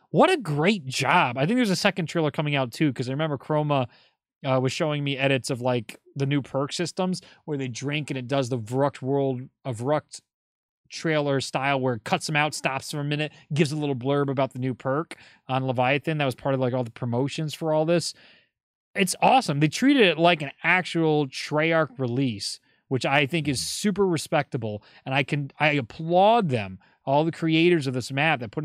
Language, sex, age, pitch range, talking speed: English, male, 30-49, 130-165 Hz, 210 wpm